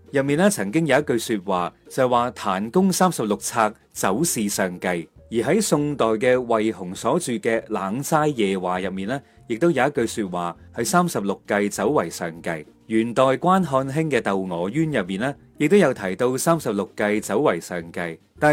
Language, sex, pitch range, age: Chinese, male, 105-160 Hz, 30-49